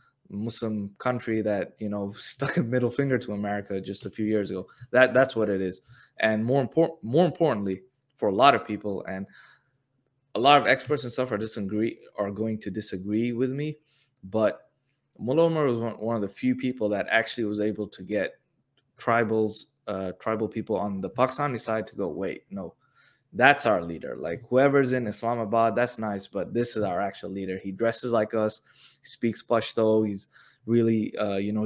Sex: male